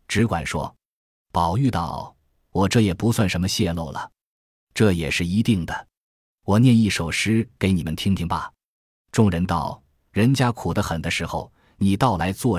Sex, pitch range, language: male, 85-115 Hz, Chinese